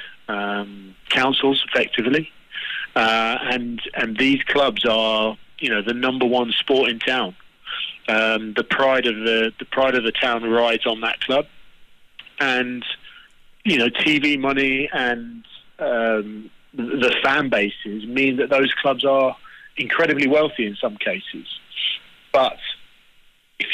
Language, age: English, 40-59